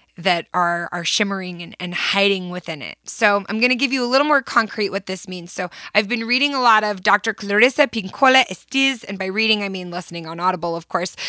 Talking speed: 230 wpm